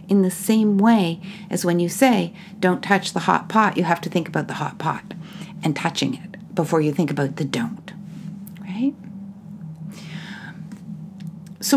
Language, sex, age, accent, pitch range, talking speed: English, female, 60-79, American, 180-215 Hz, 165 wpm